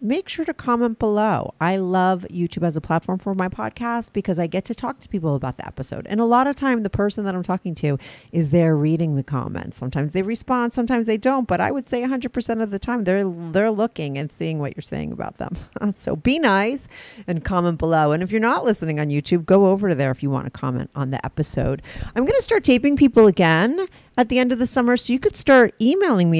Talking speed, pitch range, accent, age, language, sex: 245 wpm, 165-235 Hz, American, 40-59, English, female